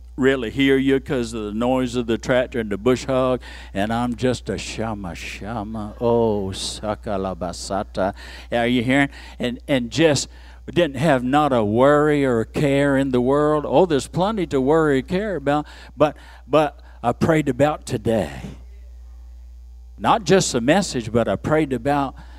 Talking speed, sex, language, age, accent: 165 wpm, male, English, 60-79, American